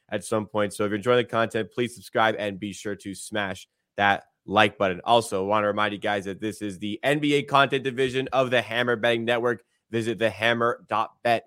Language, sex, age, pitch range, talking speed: English, male, 20-39, 105-130 Hz, 210 wpm